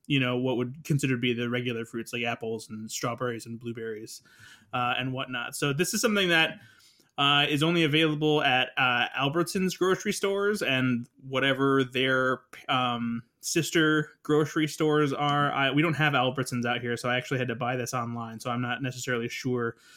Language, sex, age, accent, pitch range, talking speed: English, male, 20-39, American, 125-155 Hz, 185 wpm